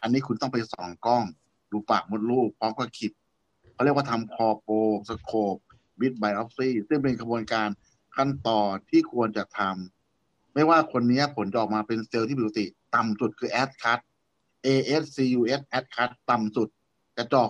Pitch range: 110-135 Hz